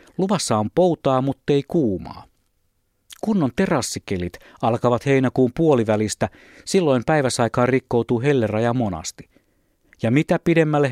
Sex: male